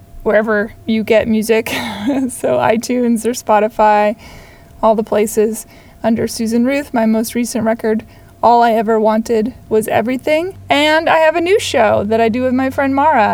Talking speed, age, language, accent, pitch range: 165 wpm, 20-39, English, American, 220-255 Hz